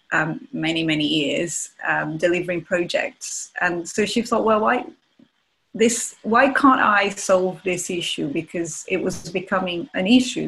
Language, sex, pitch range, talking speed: English, female, 175-220 Hz, 150 wpm